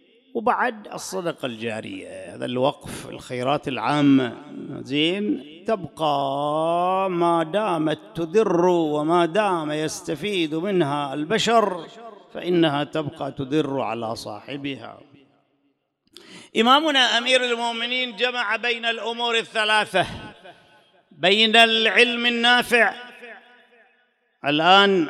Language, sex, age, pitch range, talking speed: English, male, 50-69, 140-215 Hz, 80 wpm